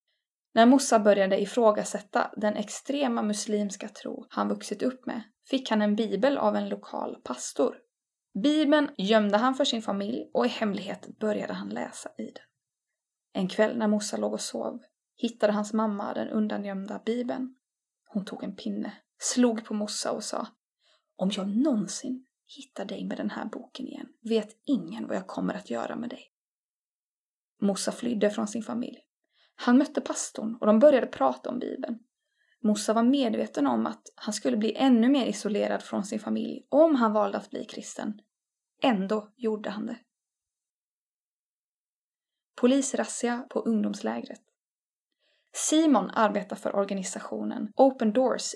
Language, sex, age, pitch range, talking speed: Swedish, female, 20-39, 210-260 Hz, 150 wpm